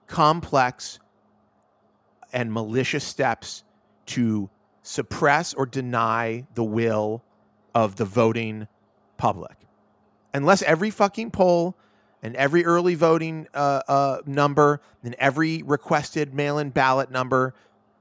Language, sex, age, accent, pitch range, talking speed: English, male, 30-49, American, 110-150 Hz, 105 wpm